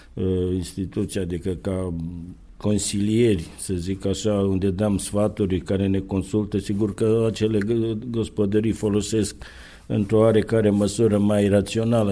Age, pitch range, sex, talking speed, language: 50-69, 95-110 Hz, male, 115 wpm, Romanian